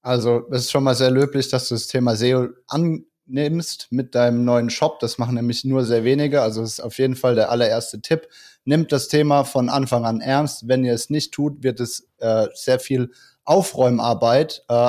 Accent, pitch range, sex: German, 120-140 Hz, male